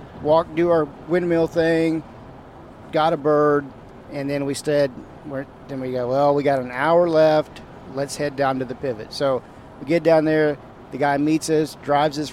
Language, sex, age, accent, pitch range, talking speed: English, male, 40-59, American, 130-160 Hz, 185 wpm